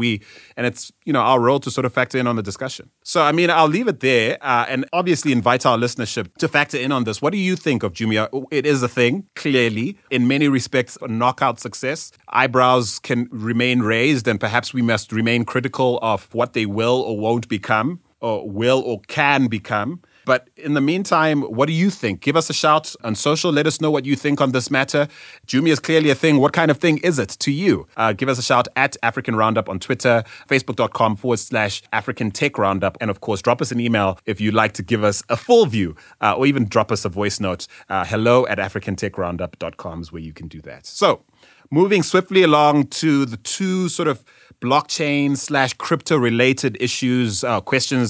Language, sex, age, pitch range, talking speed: English, male, 30-49, 110-145 Hz, 215 wpm